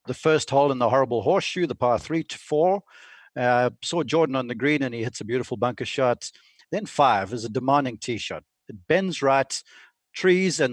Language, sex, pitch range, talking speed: English, male, 120-155 Hz, 205 wpm